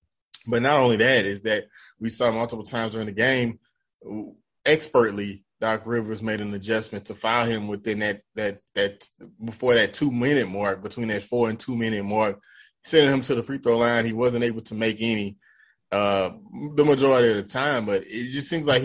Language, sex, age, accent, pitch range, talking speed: English, male, 20-39, American, 105-120 Hz, 195 wpm